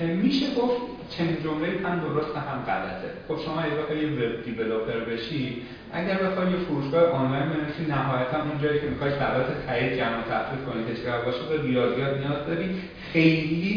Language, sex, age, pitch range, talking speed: Persian, male, 40-59, 110-155 Hz, 175 wpm